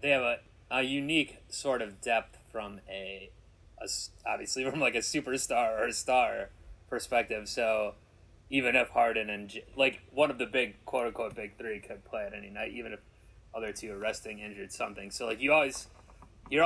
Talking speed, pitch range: 185 wpm, 95-120 Hz